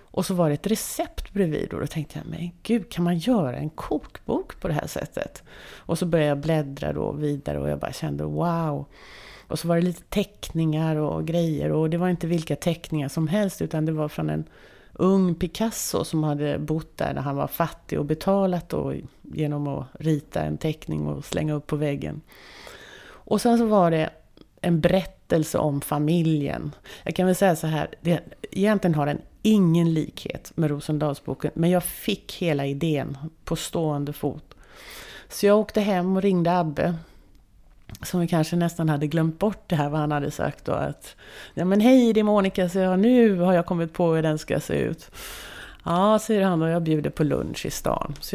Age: 30-49